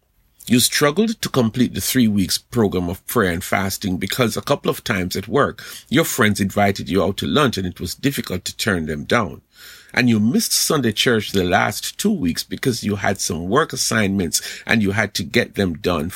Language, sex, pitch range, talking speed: English, male, 95-130 Hz, 205 wpm